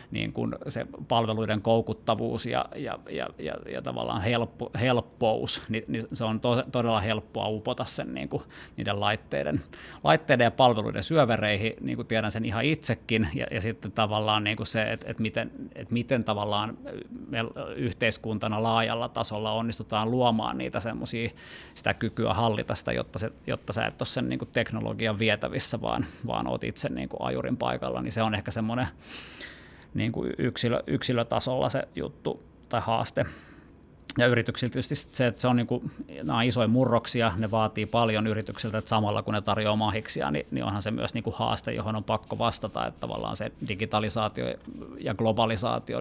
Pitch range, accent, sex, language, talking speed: 105-115 Hz, native, male, Finnish, 165 wpm